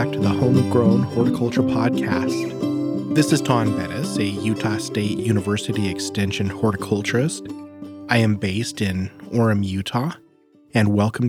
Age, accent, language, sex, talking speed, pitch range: 30-49, American, English, male, 120 wpm, 105-125 Hz